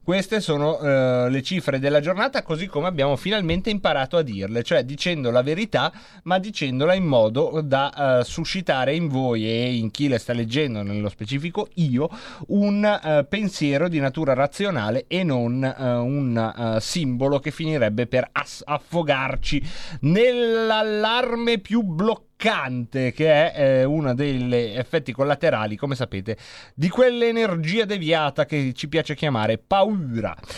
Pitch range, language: 130-175 Hz, Italian